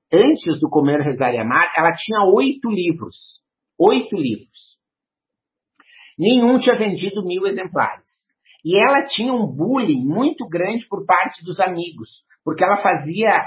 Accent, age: Brazilian, 50-69